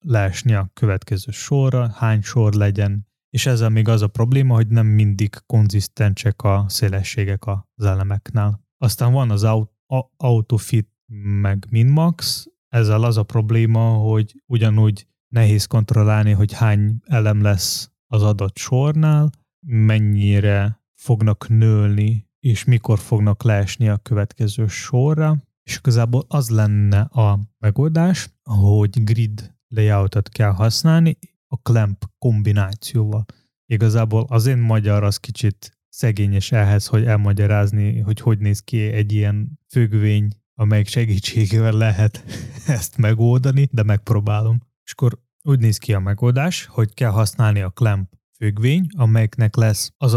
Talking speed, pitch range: 125 wpm, 105-120 Hz